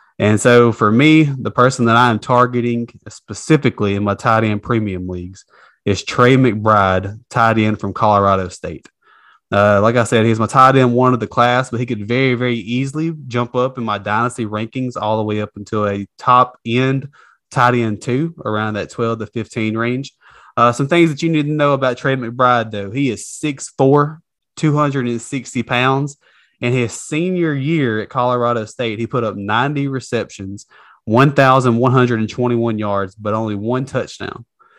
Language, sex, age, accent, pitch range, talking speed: English, male, 20-39, American, 110-130 Hz, 175 wpm